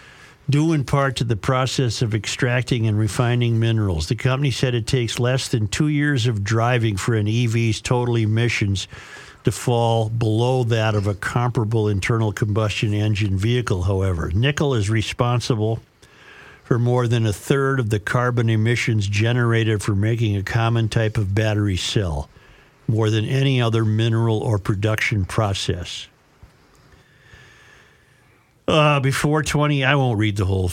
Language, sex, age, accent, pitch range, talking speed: English, male, 50-69, American, 110-130 Hz, 150 wpm